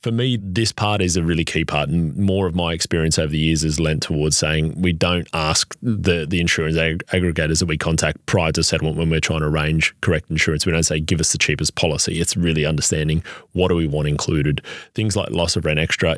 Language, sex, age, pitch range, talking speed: English, male, 30-49, 80-90 Hz, 235 wpm